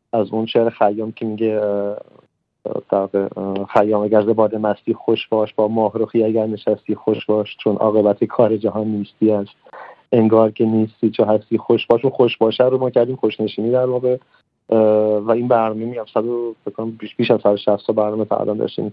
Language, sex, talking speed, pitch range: Persian, male, 170 wpm, 105-115 Hz